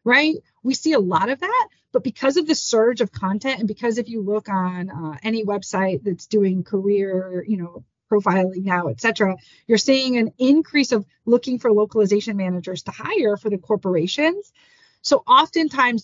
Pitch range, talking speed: 195-245 Hz, 180 wpm